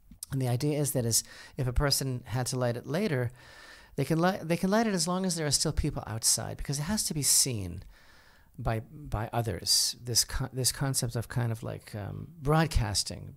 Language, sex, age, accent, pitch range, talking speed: English, male, 40-59, American, 110-140 Hz, 215 wpm